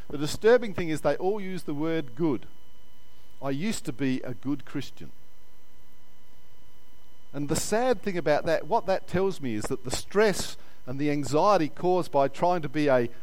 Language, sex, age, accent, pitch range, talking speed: English, male, 50-69, Australian, 140-195 Hz, 180 wpm